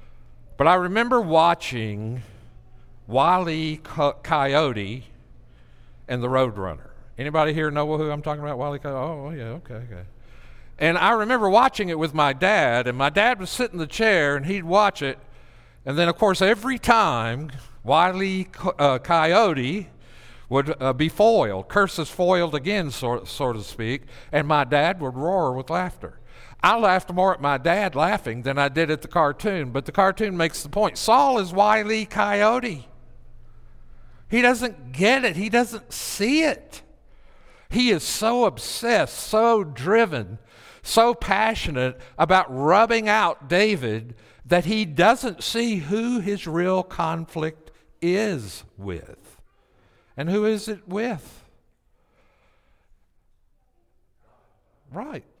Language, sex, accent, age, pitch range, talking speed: English, male, American, 60-79, 125-205 Hz, 135 wpm